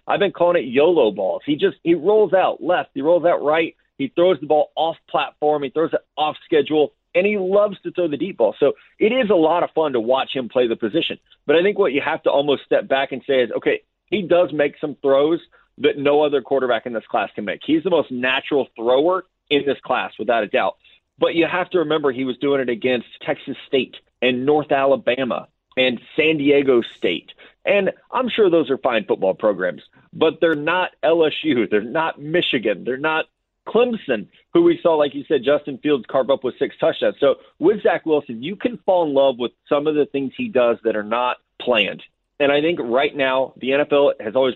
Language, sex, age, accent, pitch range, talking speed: English, male, 30-49, American, 130-170 Hz, 225 wpm